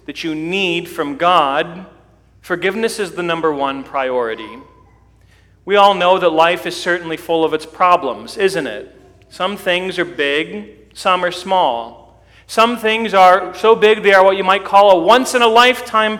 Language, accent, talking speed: English, American, 165 wpm